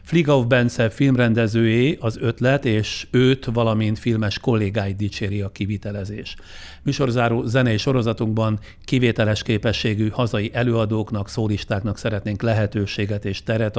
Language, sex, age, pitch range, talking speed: Hungarian, male, 60-79, 105-120 Hz, 110 wpm